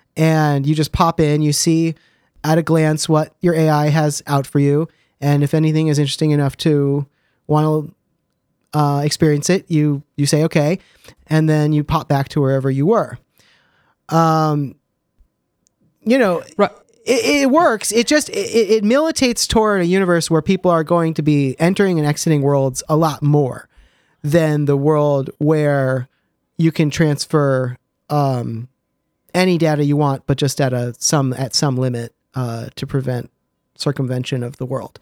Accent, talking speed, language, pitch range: American, 165 wpm, English, 140-165 Hz